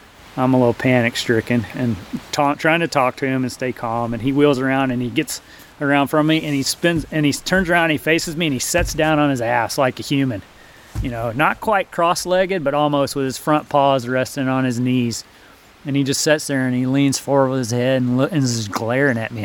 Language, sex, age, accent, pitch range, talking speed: English, male, 30-49, American, 125-145 Hz, 245 wpm